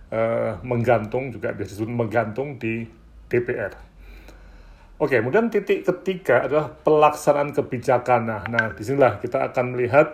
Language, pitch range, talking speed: Indonesian, 115-130 Hz, 125 wpm